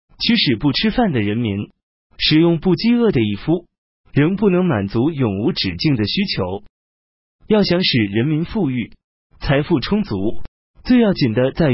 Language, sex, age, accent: Chinese, male, 30-49, native